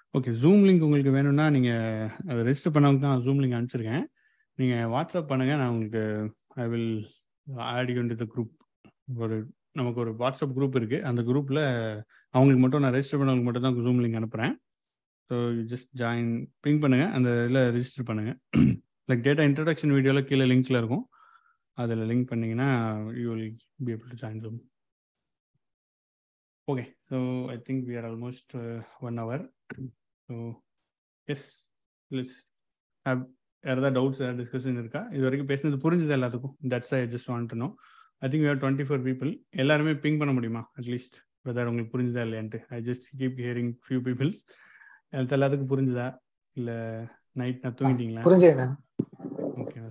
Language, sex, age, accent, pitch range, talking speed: Tamil, male, 30-49, native, 120-140 Hz, 160 wpm